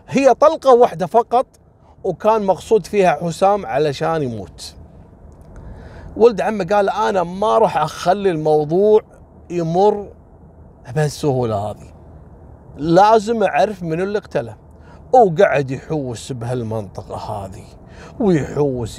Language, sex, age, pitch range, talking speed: Arabic, male, 30-49, 125-200 Hz, 100 wpm